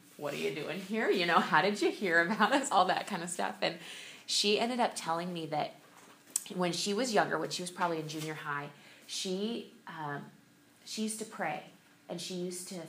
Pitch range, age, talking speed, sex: 155-205 Hz, 20-39, 215 wpm, female